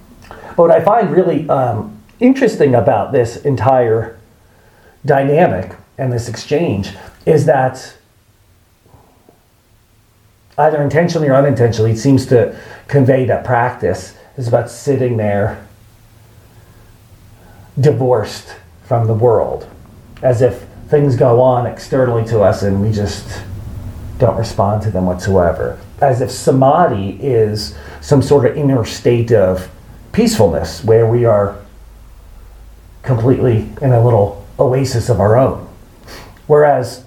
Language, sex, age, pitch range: English, male, 40-59, 100-130 Hz